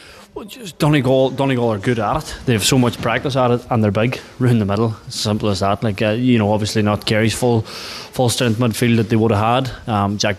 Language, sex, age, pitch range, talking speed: English, male, 20-39, 105-120 Hz, 255 wpm